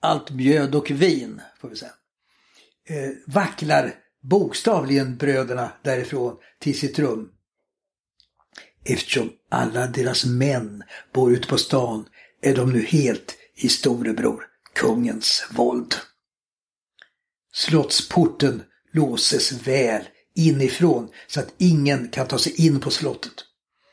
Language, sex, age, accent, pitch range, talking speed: English, male, 60-79, Swedish, 130-165 Hz, 105 wpm